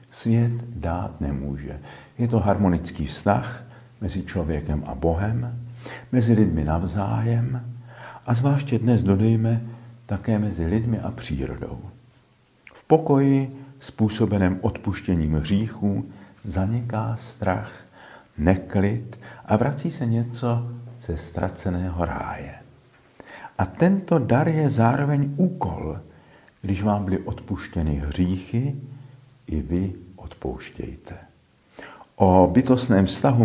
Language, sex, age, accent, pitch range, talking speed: Czech, male, 50-69, native, 90-125 Hz, 95 wpm